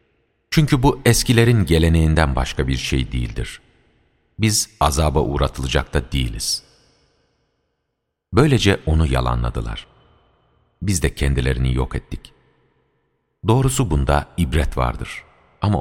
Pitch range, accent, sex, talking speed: 65-110 Hz, native, male, 100 wpm